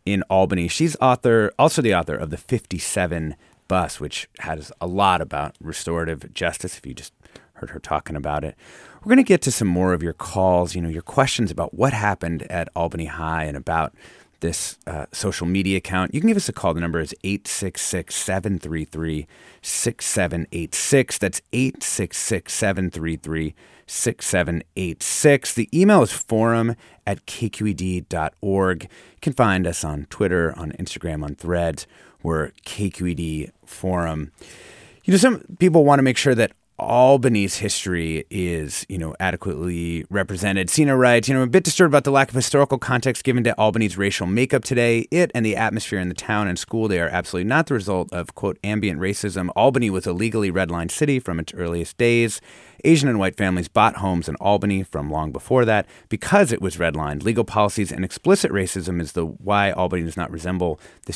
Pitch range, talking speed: 85-115 Hz, 175 wpm